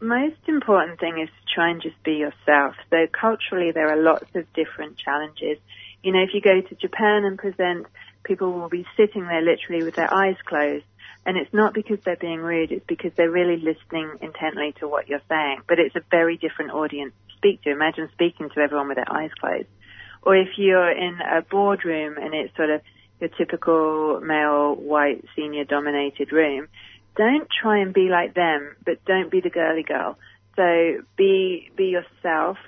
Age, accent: 30-49, British